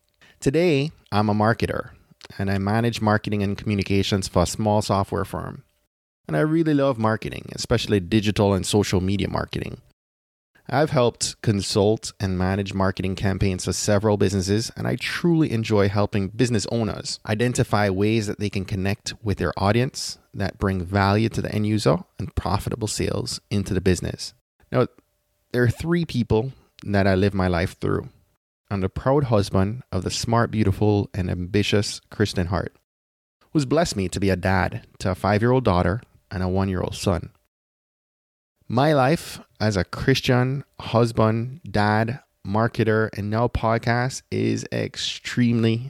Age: 20-39